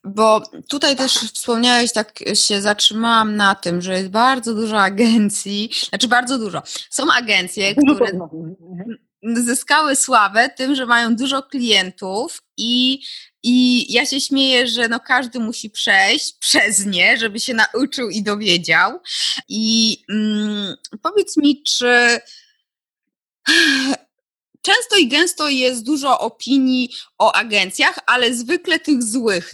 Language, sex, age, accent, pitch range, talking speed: Polish, female, 20-39, native, 200-265 Hz, 125 wpm